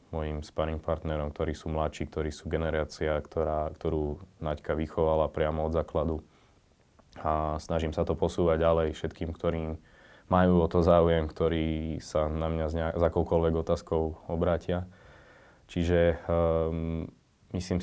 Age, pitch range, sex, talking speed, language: 20-39, 80-85 Hz, male, 130 wpm, Slovak